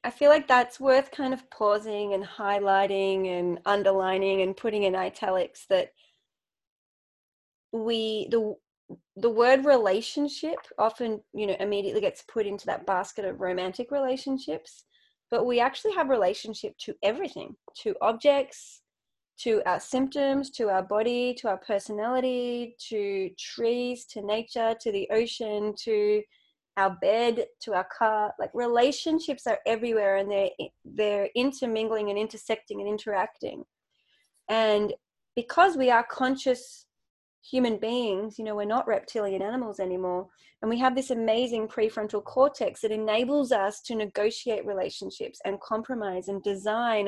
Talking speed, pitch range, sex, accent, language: 140 wpm, 205-255 Hz, female, Australian, English